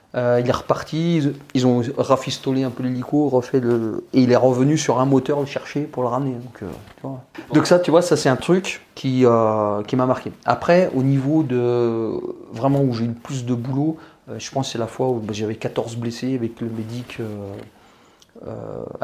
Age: 40-59